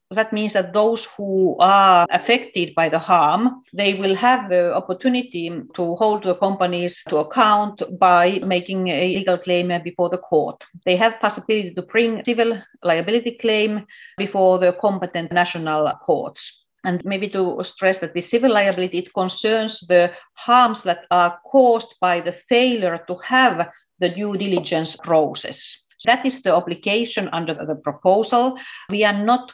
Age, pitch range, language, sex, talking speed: 40-59, 175-215 Hz, English, female, 150 wpm